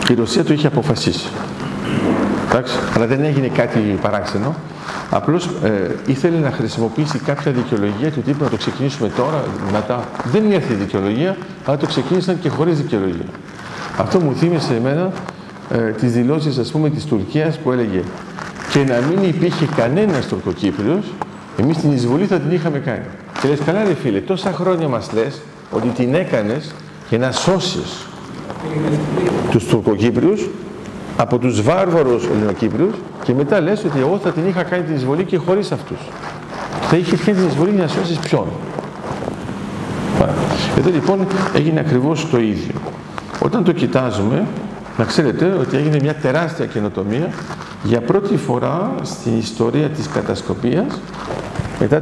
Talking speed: 140 wpm